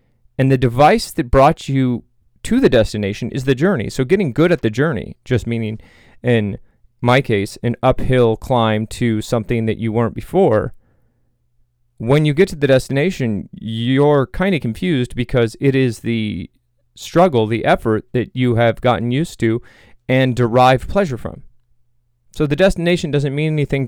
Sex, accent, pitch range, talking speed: male, American, 115-130 Hz, 165 wpm